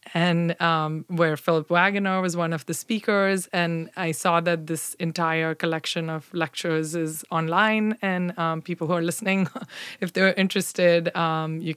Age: 20-39